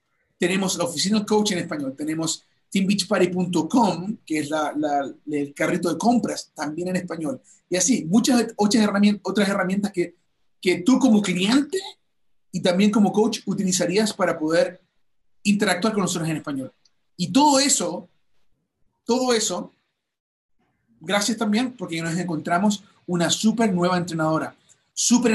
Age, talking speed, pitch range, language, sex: 30-49, 135 wpm, 170-220 Hz, Spanish, male